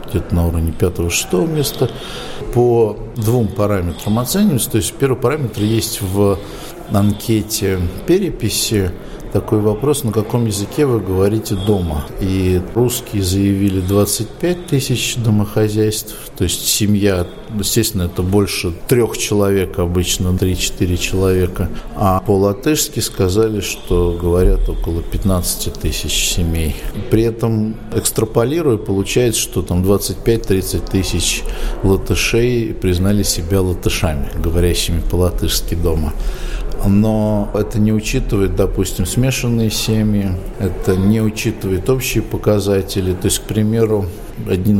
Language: Russian